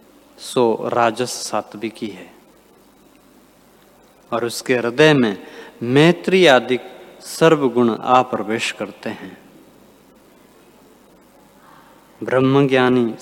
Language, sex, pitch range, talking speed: Hindi, male, 115-155 Hz, 75 wpm